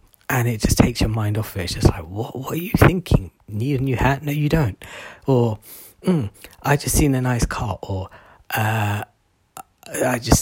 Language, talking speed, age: English, 200 wpm, 40-59